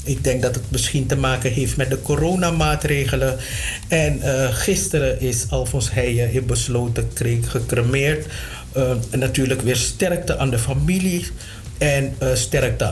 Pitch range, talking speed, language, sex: 120-165 Hz, 145 wpm, Dutch, male